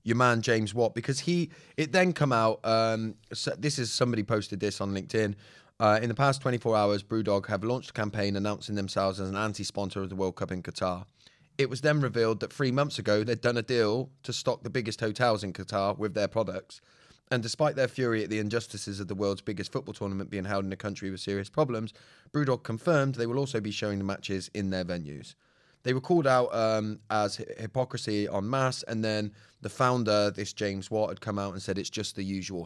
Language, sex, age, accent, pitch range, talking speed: English, male, 20-39, British, 100-130 Hz, 220 wpm